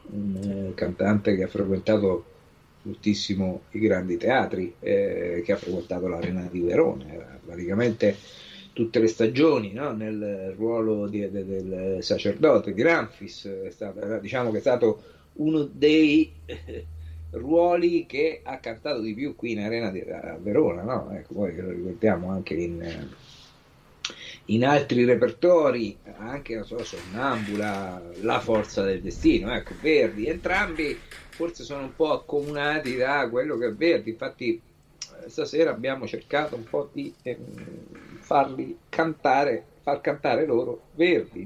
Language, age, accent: Italian, 50-69, native